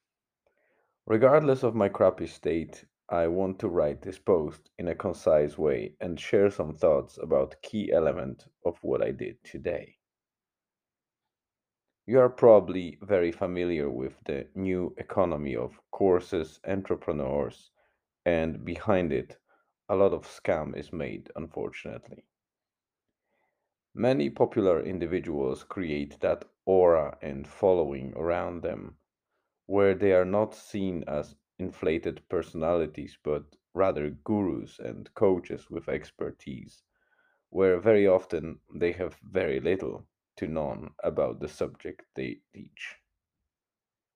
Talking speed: 120 wpm